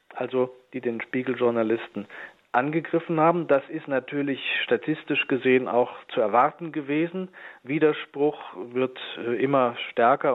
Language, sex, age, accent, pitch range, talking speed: German, male, 40-59, German, 125-155 Hz, 110 wpm